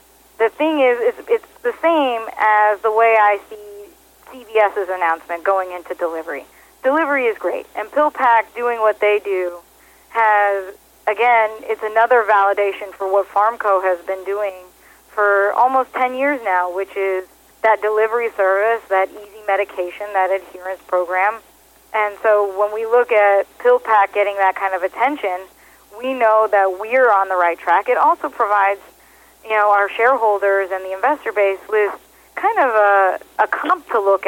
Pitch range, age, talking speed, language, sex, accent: 195-230 Hz, 40-59, 160 wpm, English, female, American